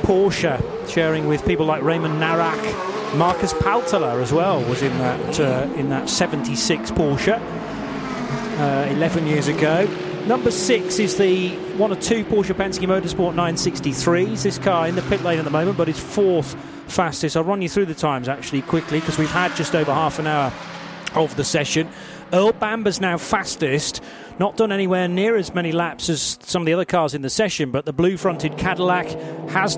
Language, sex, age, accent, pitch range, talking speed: English, male, 30-49, British, 150-180 Hz, 185 wpm